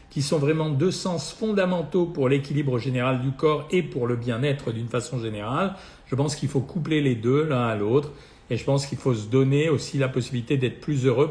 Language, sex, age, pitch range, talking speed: French, male, 50-69, 130-160 Hz, 220 wpm